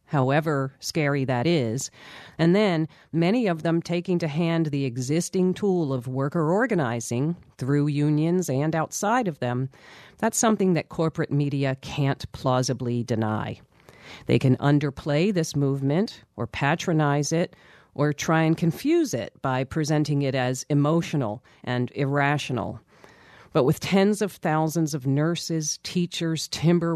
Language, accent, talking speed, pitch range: English, American, 135 wpm, 130-170 Hz